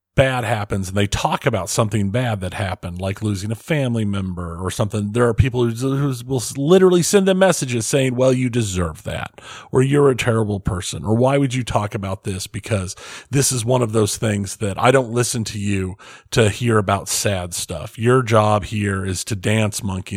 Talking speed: 205 wpm